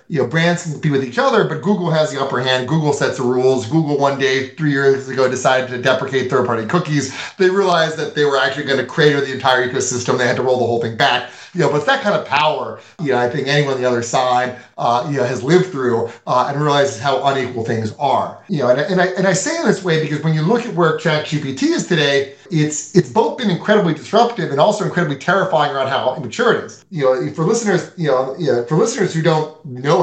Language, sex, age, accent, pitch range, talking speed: English, male, 30-49, American, 135-180 Hz, 260 wpm